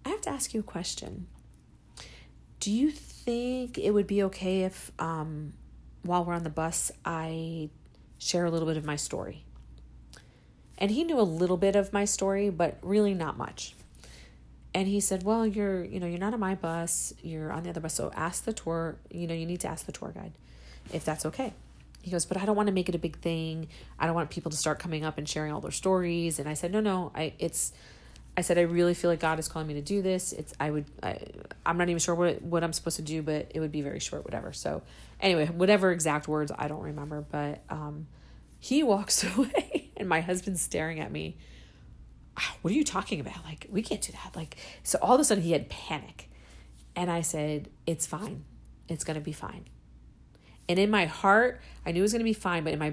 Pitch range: 150-190 Hz